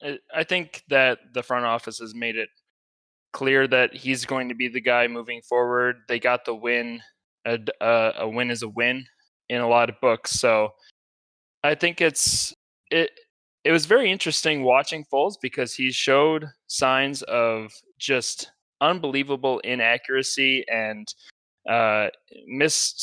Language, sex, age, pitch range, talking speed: English, male, 20-39, 115-145 Hz, 150 wpm